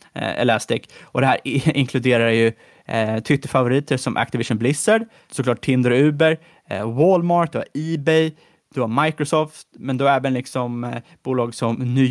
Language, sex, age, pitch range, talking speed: Swedish, male, 20-39, 125-155 Hz, 155 wpm